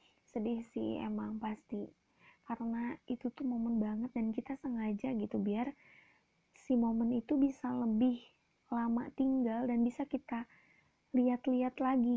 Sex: female